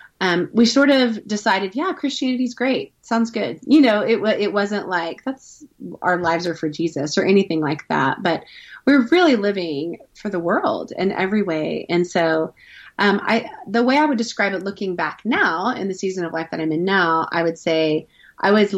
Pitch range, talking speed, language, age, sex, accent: 170-220 Hz, 210 wpm, English, 30-49, female, American